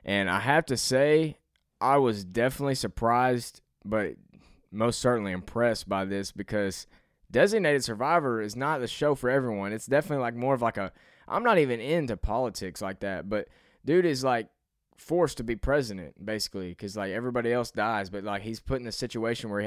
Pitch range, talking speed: 100-130 Hz, 185 wpm